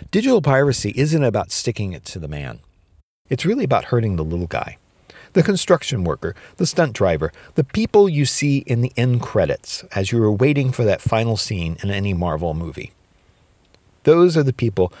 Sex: male